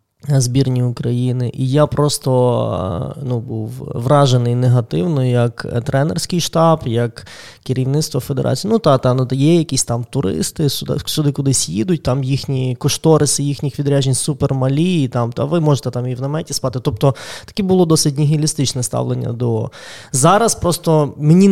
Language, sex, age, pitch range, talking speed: Ukrainian, male, 20-39, 130-155 Hz, 140 wpm